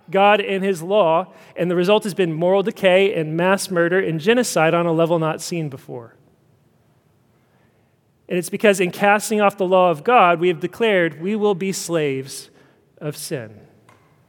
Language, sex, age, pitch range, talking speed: English, male, 40-59, 150-205 Hz, 170 wpm